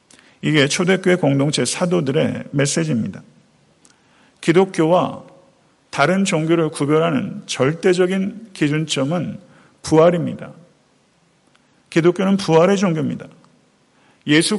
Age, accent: 50-69, native